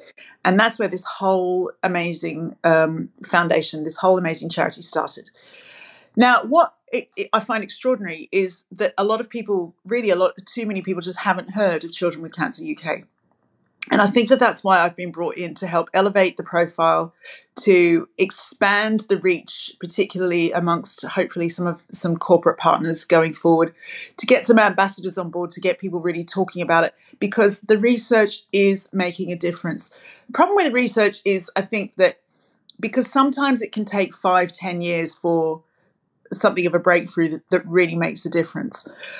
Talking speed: 175 wpm